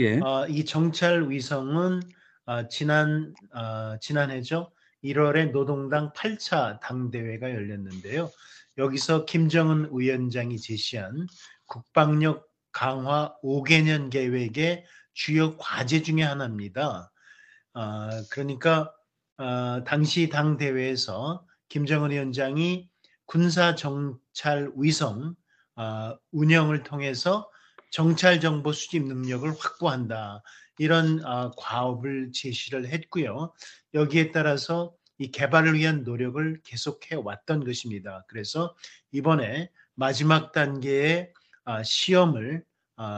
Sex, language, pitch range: male, Korean, 130-160 Hz